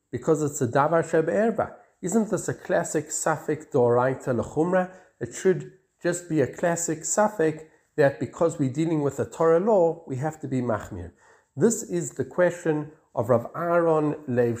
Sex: male